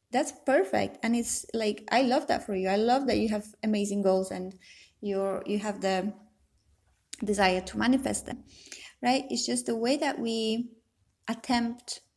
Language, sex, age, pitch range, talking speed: English, female, 20-39, 200-235 Hz, 170 wpm